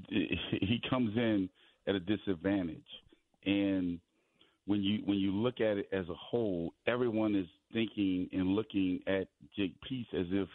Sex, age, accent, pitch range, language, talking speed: male, 40-59, American, 95-120 Hz, English, 155 wpm